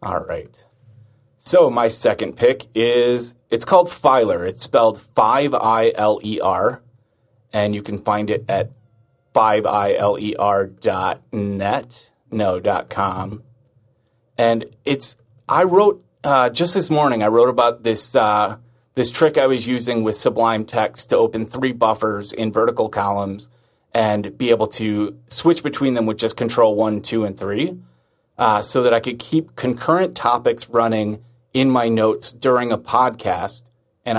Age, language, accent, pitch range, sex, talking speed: 30-49, English, American, 110-130 Hz, male, 140 wpm